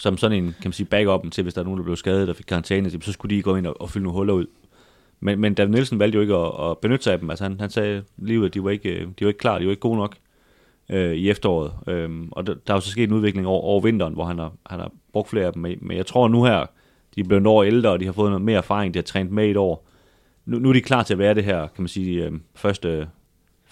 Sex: male